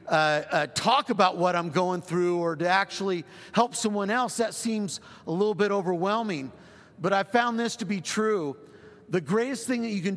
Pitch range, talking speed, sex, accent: 175-215 Hz, 195 wpm, male, American